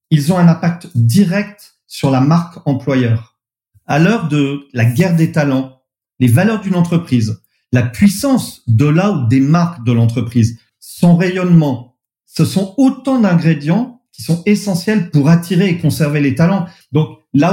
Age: 40-59